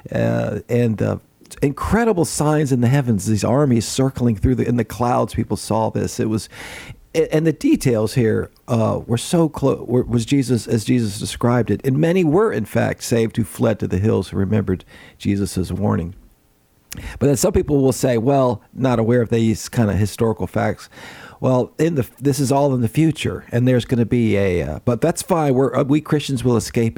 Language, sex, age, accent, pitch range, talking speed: English, male, 50-69, American, 105-130 Hz, 200 wpm